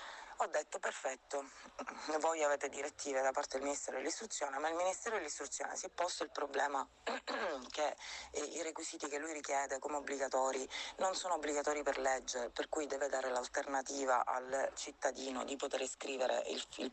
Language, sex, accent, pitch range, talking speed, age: Italian, female, native, 125-150 Hz, 160 wpm, 30-49